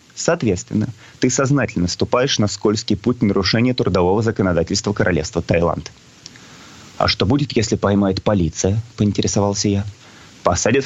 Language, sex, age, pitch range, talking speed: Russian, male, 30-49, 95-125 Hz, 115 wpm